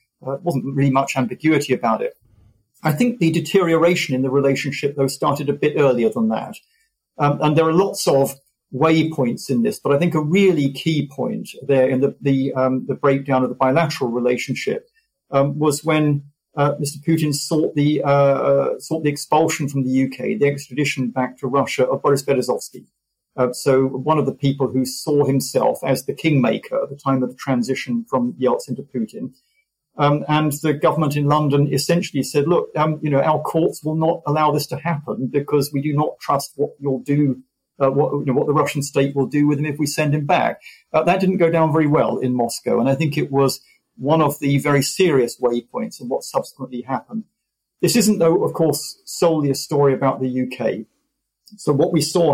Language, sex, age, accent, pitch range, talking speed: English, male, 40-59, British, 135-160 Hz, 205 wpm